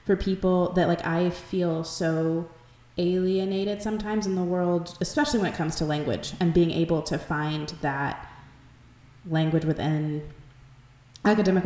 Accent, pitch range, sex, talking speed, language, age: American, 150-190 Hz, female, 140 wpm, English, 20-39